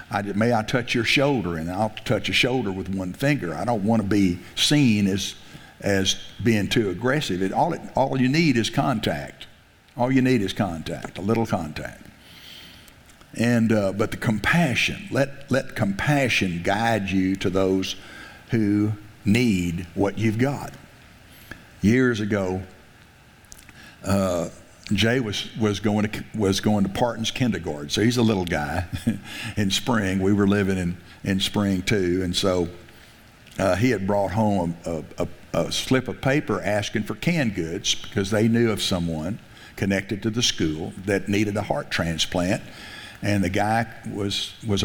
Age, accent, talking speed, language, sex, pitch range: 60-79, American, 165 wpm, English, male, 95-115 Hz